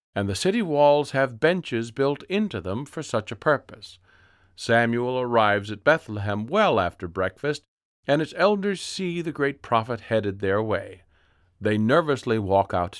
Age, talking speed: 50-69, 155 wpm